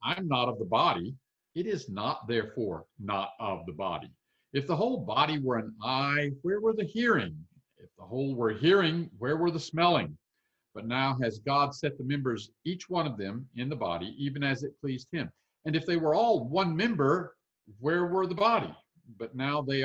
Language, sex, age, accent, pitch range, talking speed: English, male, 50-69, American, 125-170 Hz, 205 wpm